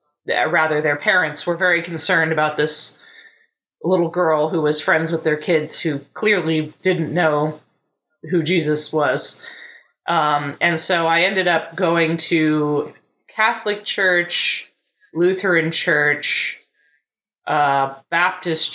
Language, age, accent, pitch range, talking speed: English, 20-39, American, 155-185 Hz, 120 wpm